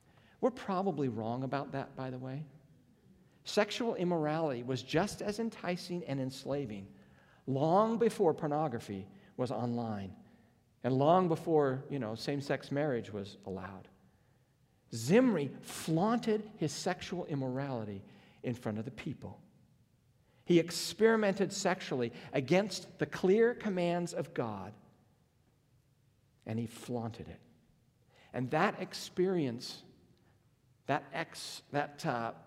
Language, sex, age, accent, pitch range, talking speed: English, male, 50-69, American, 120-165 Hz, 110 wpm